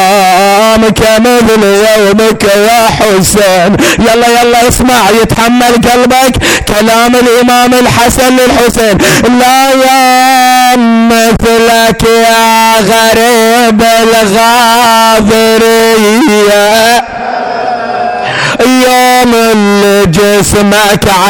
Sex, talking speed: male, 60 wpm